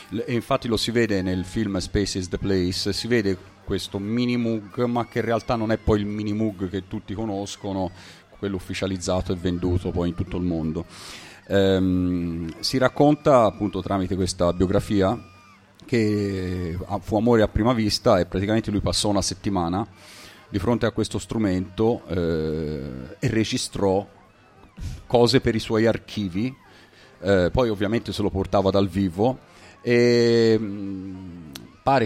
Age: 40-59